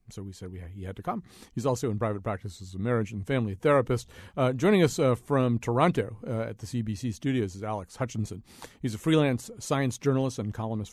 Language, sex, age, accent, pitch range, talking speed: English, male, 40-59, American, 115-155 Hz, 215 wpm